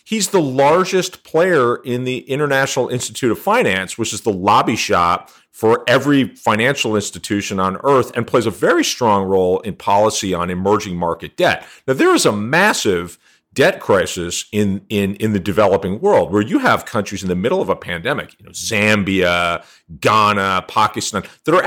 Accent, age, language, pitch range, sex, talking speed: American, 40-59, English, 95-125 Hz, male, 175 wpm